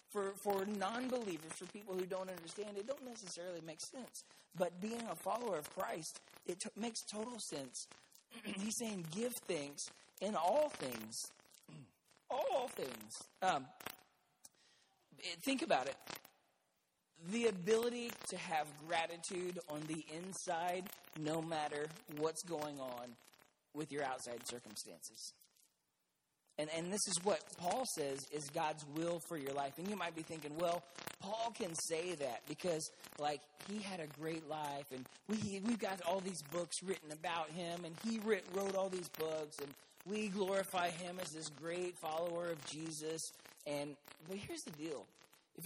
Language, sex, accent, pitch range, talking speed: English, male, American, 150-195 Hz, 155 wpm